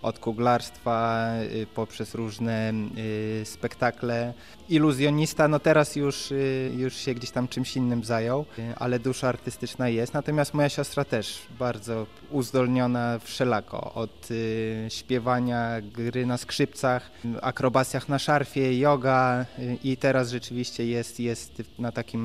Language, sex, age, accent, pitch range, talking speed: Polish, male, 20-39, native, 115-130 Hz, 115 wpm